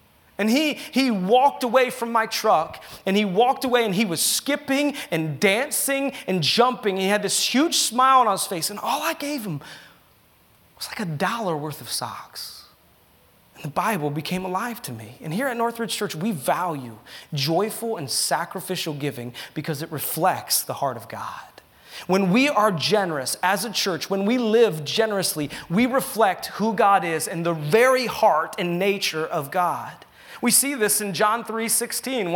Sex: male